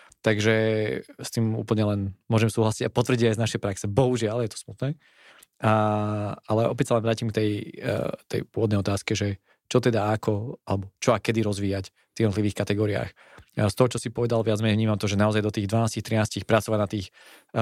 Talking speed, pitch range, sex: 200 wpm, 105-115 Hz, male